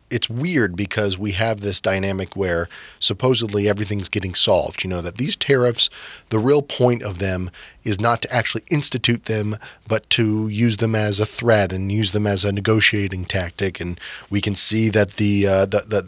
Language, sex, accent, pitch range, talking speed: English, male, American, 95-115 Hz, 190 wpm